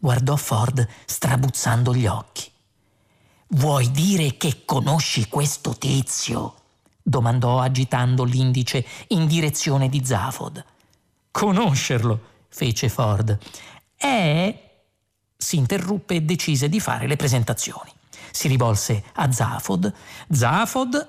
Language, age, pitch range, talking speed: Italian, 40-59, 125-170 Hz, 100 wpm